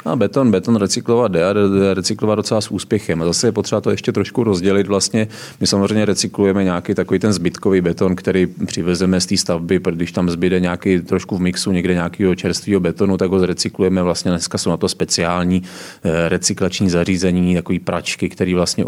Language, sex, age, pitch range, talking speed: Czech, male, 30-49, 90-105 Hz, 180 wpm